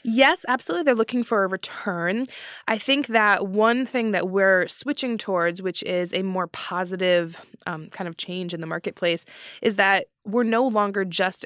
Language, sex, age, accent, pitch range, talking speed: English, female, 20-39, American, 175-210 Hz, 180 wpm